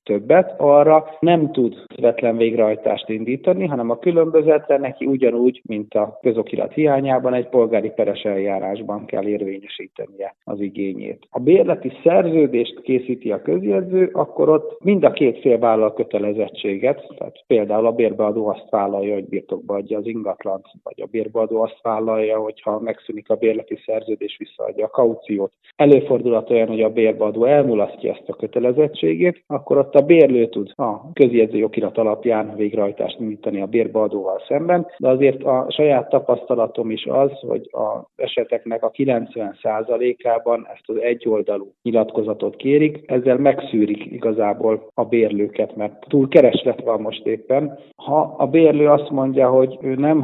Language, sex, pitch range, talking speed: Hungarian, male, 110-135 Hz, 145 wpm